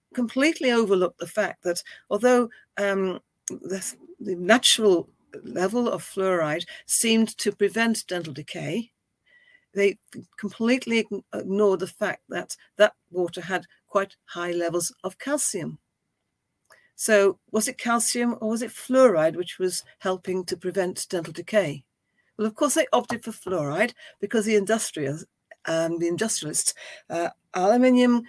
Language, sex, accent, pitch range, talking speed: English, female, British, 180-225 Hz, 135 wpm